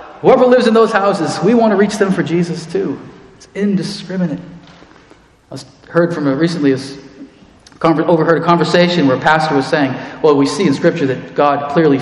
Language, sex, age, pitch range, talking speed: English, male, 40-59, 115-160 Hz, 180 wpm